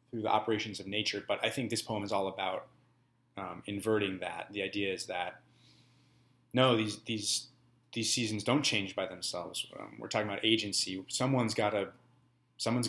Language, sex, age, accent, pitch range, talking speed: English, male, 30-49, American, 100-125 Hz, 170 wpm